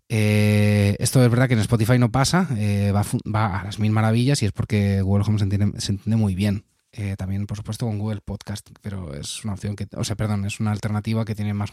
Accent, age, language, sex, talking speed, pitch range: Spanish, 20-39, Spanish, male, 245 wpm, 105-130 Hz